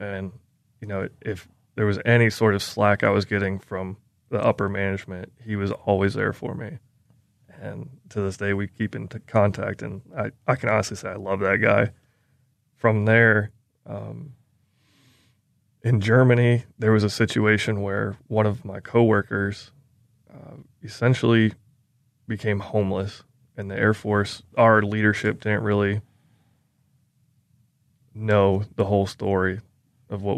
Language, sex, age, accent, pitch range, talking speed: English, male, 20-39, American, 100-120 Hz, 145 wpm